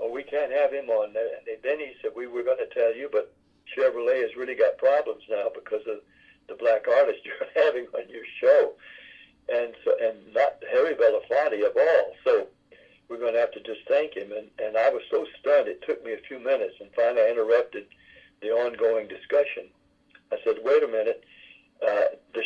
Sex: male